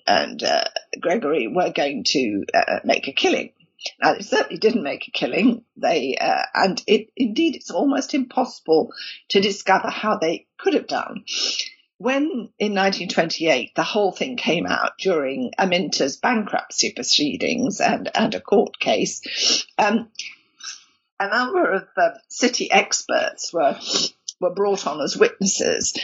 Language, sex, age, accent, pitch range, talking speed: English, female, 50-69, British, 195-280 Hz, 145 wpm